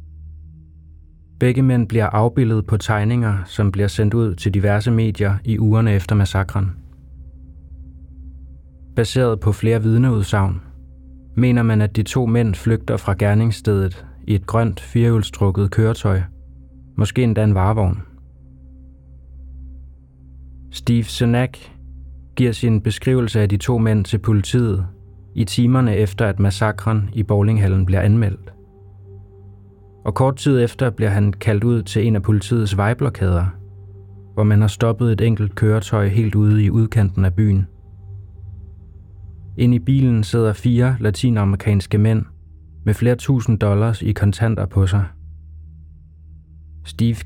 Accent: native